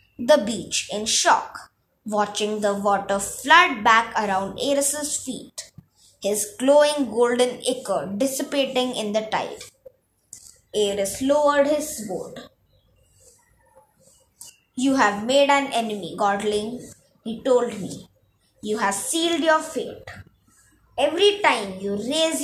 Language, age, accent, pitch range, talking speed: English, 20-39, Indian, 215-295 Hz, 110 wpm